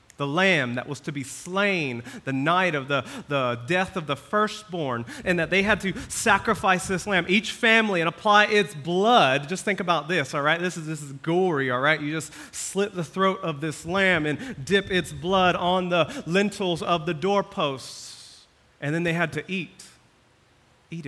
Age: 30-49